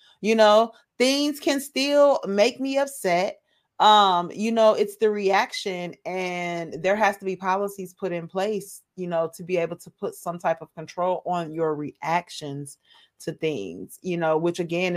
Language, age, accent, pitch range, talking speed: English, 30-49, American, 165-230 Hz, 170 wpm